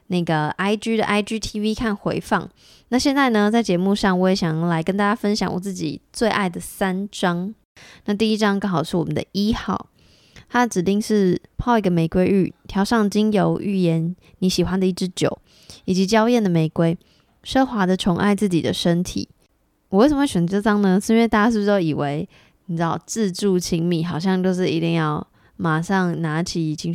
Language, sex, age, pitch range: Chinese, female, 20-39, 170-200 Hz